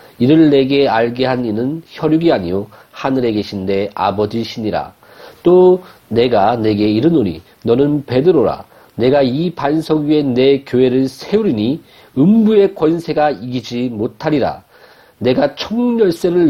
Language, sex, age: Korean, male, 40-59